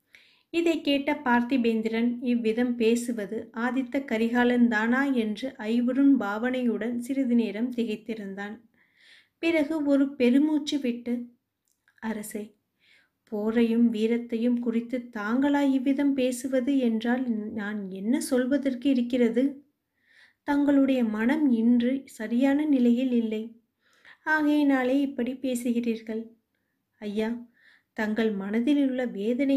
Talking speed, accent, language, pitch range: 85 wpm, native, Tamil, 225-255 Hz